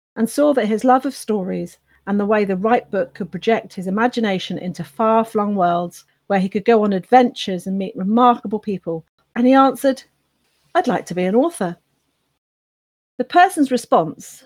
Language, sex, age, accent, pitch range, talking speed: English, female, 40-59, British, 180-245 Hz, 175 wpm